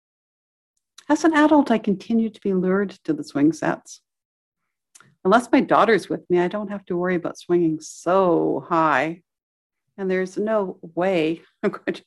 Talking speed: 165 wpm